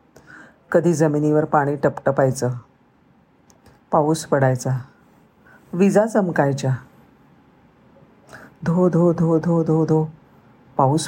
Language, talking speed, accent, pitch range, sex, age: Marathi, 80 wpm, native, 150-190 Hz, female, 50-69